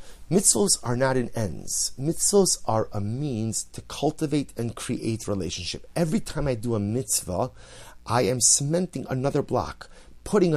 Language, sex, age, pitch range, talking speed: English, male, 30-49, 105-140 Hz, 150 wpm